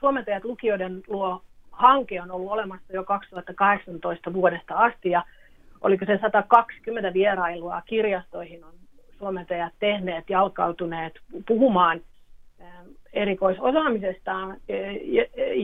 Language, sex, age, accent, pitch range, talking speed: Finnish, female, 40-59, native, 175-210 Hz, 85 wpm